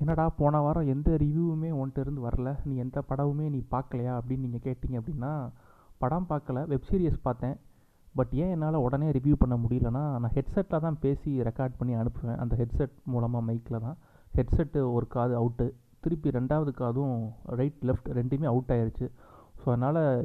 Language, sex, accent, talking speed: Tamil, male, native, 165 wpm